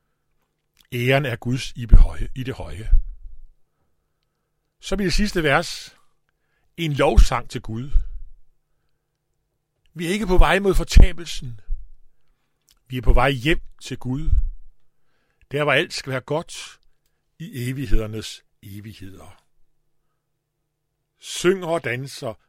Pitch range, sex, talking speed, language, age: 105-150 Hz, male, 110 wpm, Danish, 60-79